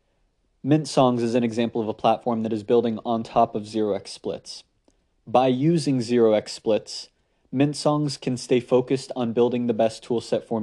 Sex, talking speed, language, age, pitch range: male, 175 wpm, English, 20-39, 115-130 Hz